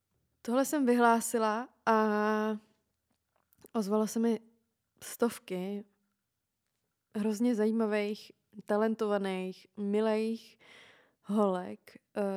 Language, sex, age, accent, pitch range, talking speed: Czech, female, 20-39, native, 200-230 Hz, 65 wpm